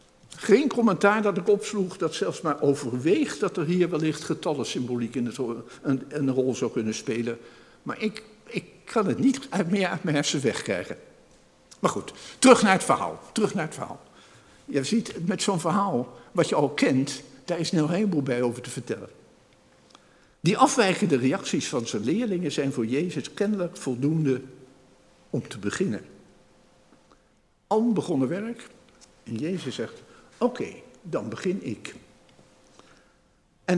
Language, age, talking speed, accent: Dutch, 60-79, 155 wpm, Dutch